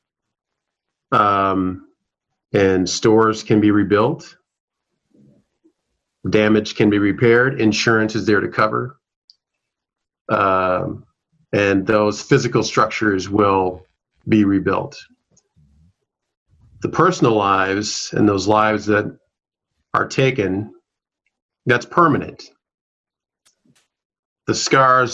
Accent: American